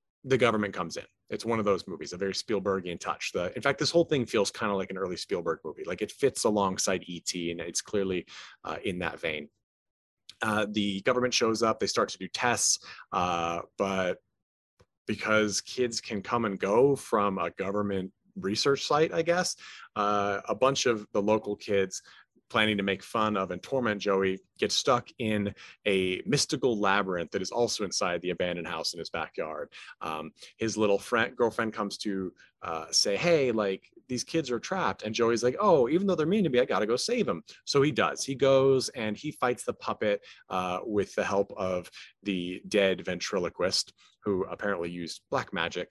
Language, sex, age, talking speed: English, male, 30-49, 195 wpm